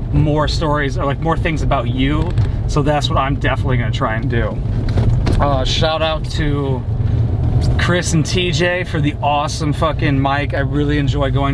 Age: 30-49